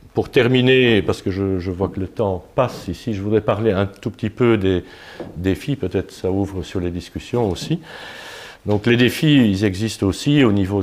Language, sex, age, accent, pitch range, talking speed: French, male, 50-69, French, 95-115 Hz, 200 wpm